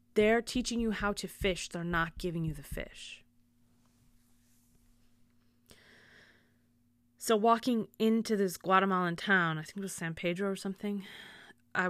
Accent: American